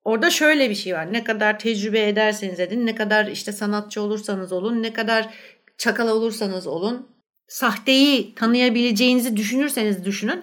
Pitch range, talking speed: 210-260 Hz, 145 wpm